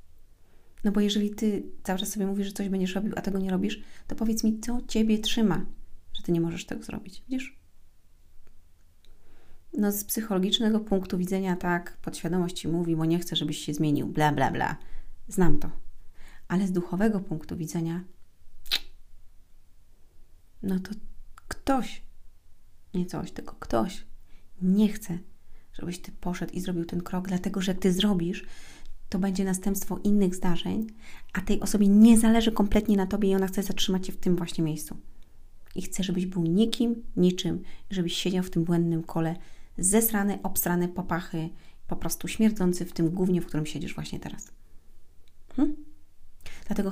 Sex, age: female, 30-49